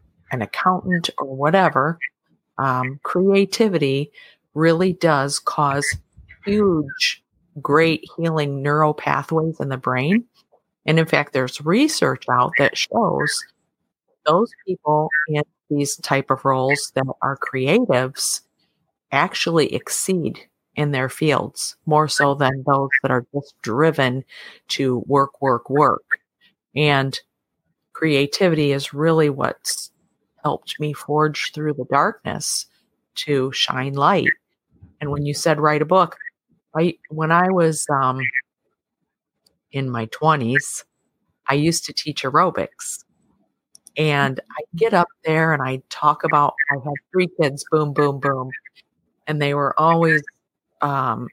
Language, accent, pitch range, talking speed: English, American, 135-160 Hz, 125 wpm